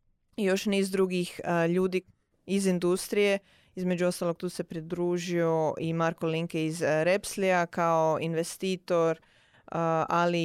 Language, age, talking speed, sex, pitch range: Croatian, 20-39, 140 wpm, female, 170-200 Hz